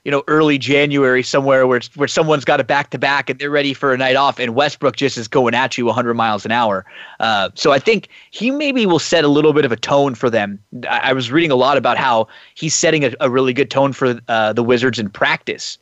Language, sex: English, male